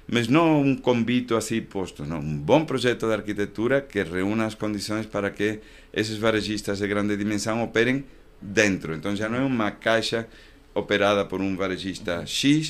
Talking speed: 170 wpm